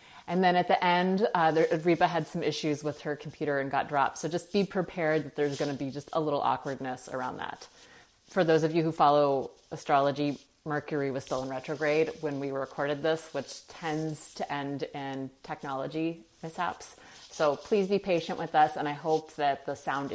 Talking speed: 195 wpm